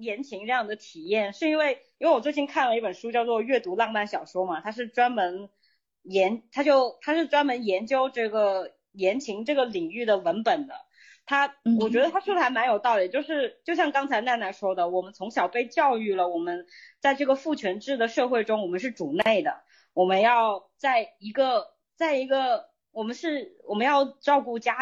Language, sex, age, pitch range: Chinese, female, 20-39, 205-290 Hz